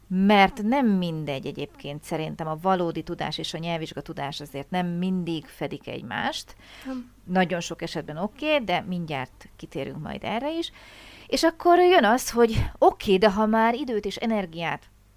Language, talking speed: Hungarian, 160 wpm